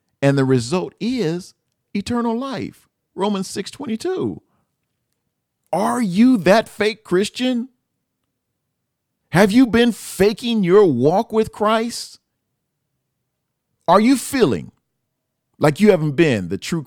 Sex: male